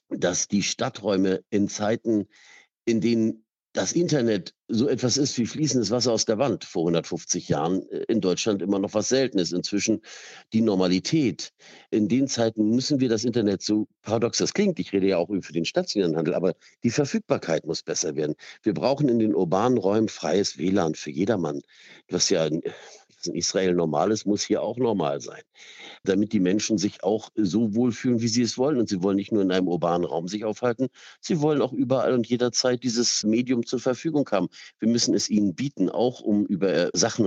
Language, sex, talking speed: German, male, 190 wpm